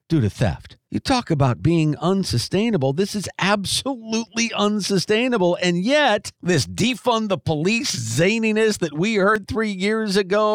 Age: 50-69